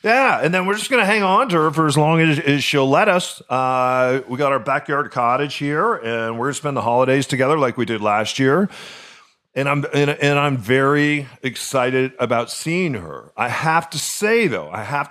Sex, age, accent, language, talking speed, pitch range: male, 40-59, American, English, 215 wpm, 115-145 Hz